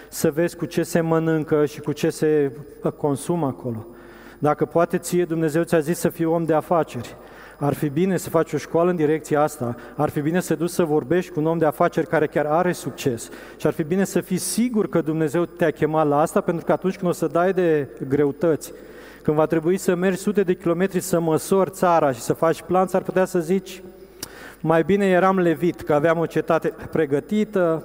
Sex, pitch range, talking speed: male, 160-205 Hz, 215 wpm